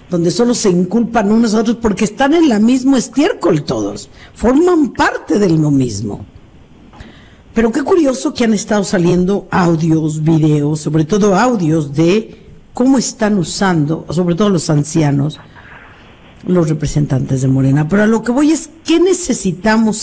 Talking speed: 155 wpm